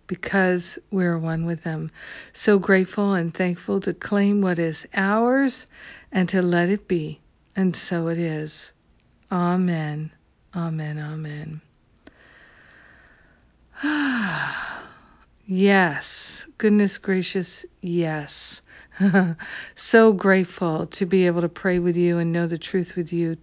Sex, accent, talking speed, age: female, American, 120 wpm, 50-69